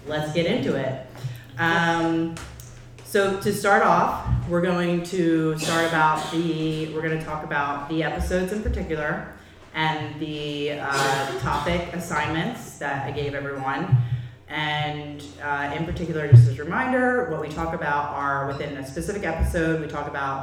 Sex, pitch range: female, 140-170 Hz